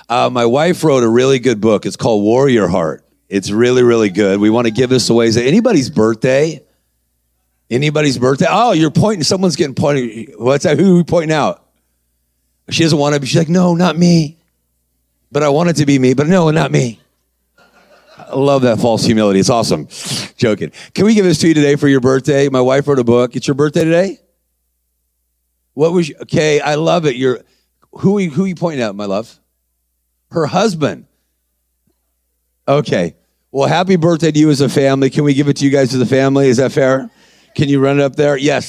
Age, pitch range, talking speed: 40-59, 100-150 Hz, 215 wpm